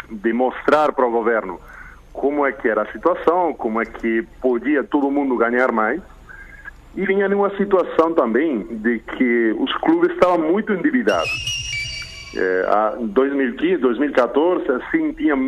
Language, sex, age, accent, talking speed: Portuguese, male, 40-59, Brazilian, 140 wpm